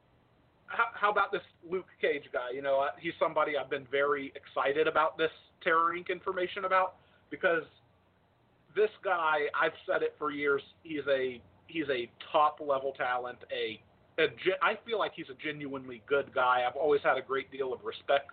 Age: 40-59